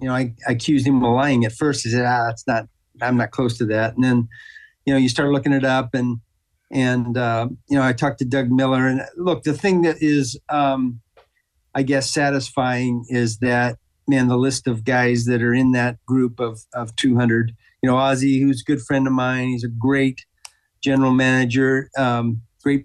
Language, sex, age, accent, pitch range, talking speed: English, male, 50-69, American, 120-135 Hz, 210 wpm